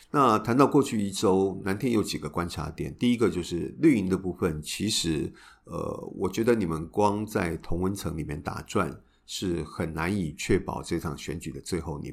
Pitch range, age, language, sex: 80-100 Hz, 50-69, Chinese, male